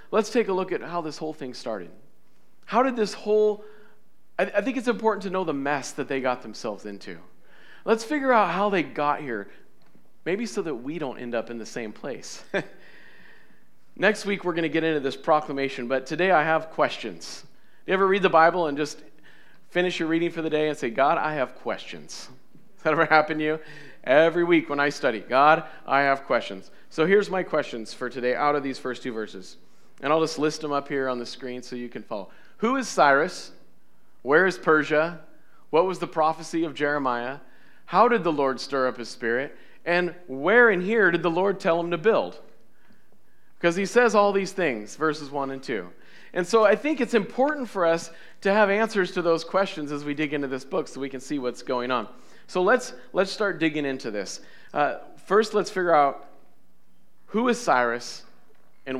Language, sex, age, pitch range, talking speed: English, male, 40-59, 140-195 Hz, 205 wpm